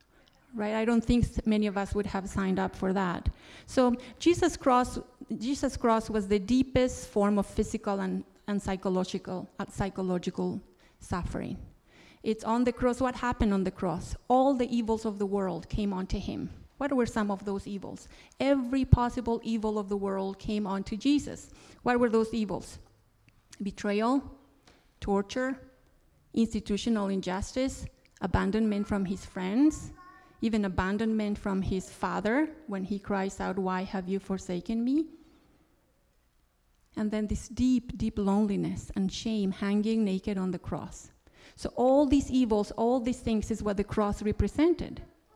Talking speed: 150 wpm